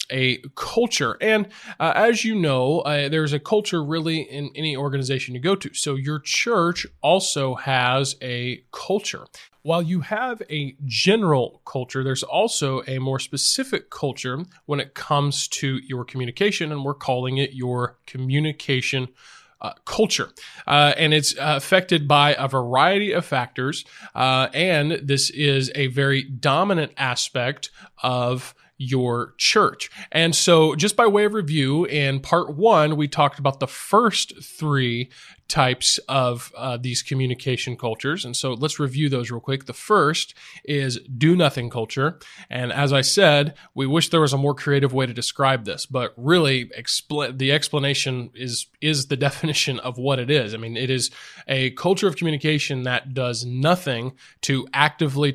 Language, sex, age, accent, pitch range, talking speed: English, male, 20-39, American, 130-150 Hz, 160 wpm